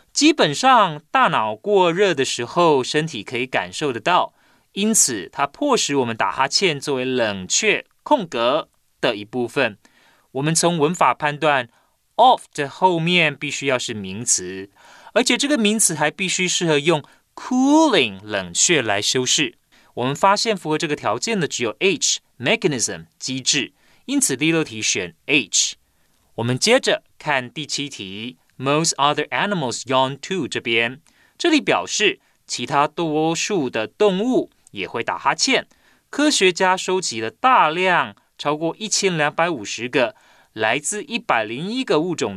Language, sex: Chinese, male